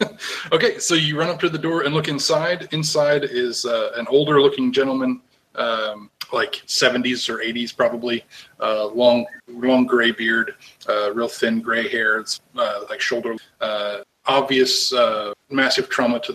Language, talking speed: English, 160 wpm